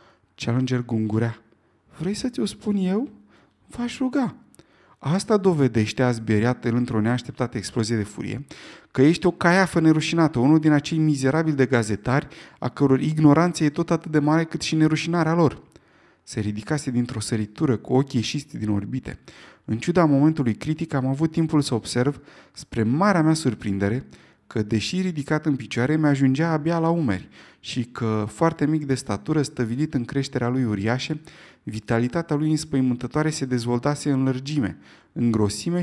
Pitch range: 115-160 Hz